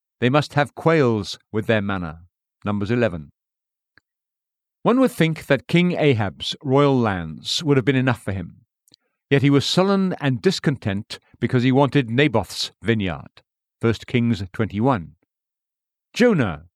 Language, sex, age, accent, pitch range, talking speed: English, male, 50-69, British, 115-165 Hz, 135 wpm